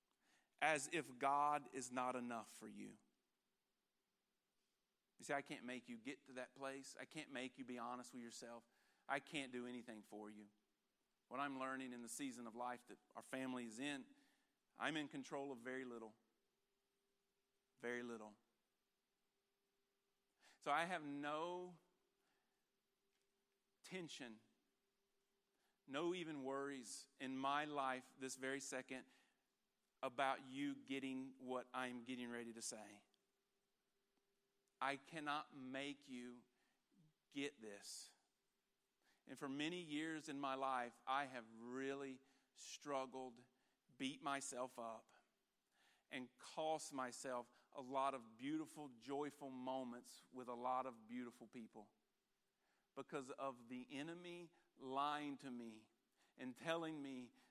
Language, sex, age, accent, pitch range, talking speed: English, male, 40-59, American, 125-145 Hz, 125 wpm